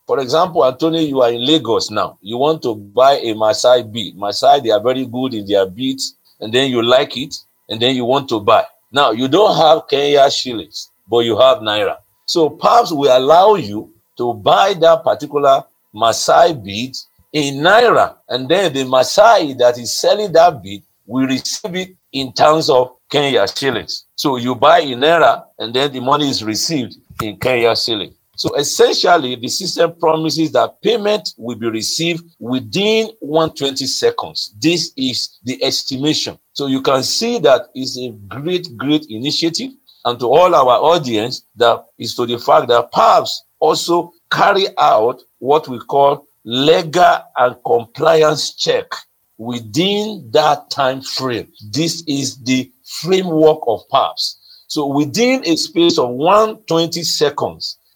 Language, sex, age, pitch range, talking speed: English, male, 50-69, 125-165 Hz, 160 wpm